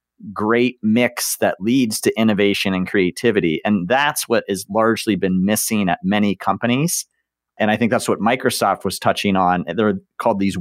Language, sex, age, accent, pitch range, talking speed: English, male, 40-59, American, 100-120 Hz, 170 wpm